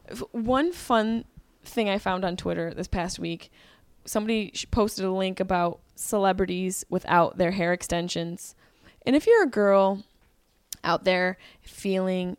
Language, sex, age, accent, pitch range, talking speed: English, female, 20-39, American, 180-225 Hz, 135 wpm